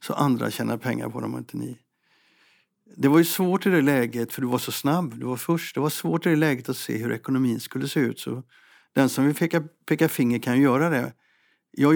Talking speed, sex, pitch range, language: 240 wpm, male, 120-155 Hz, Swedish